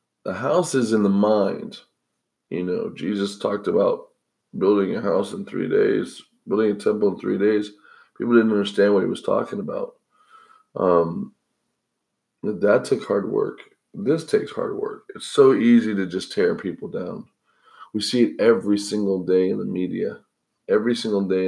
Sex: male